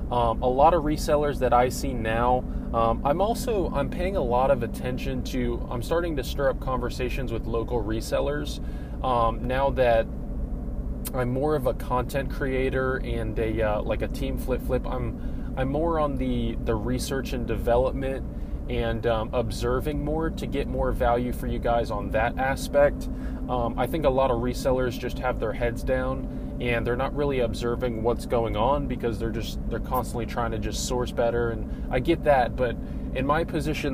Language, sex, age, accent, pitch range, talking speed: English, male, 20-39, American, 115-130 Hz, 185 wpm